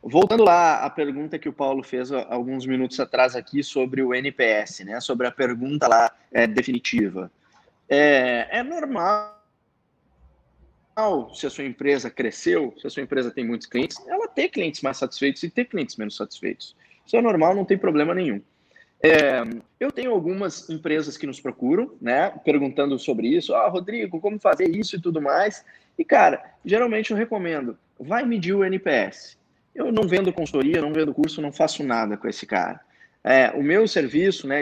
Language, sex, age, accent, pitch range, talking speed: Portuguese, male, 20-39, Brazilian, 130-175 Hz, 170 wpm